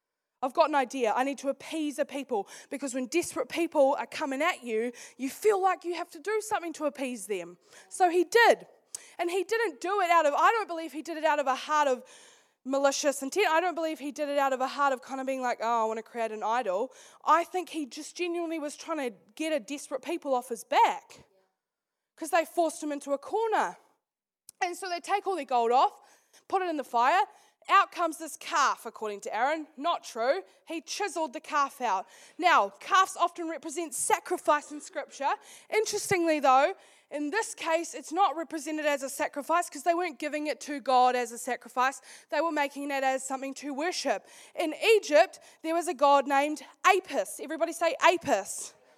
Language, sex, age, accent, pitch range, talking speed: English, female, 10-29, Australian, 275-360 Hz, 210 wpm